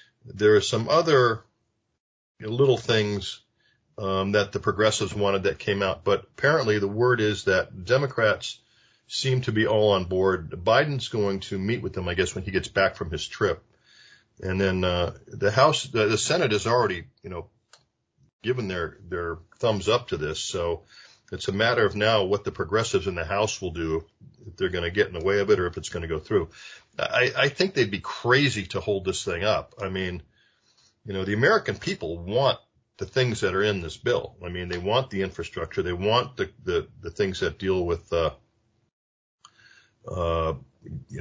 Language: English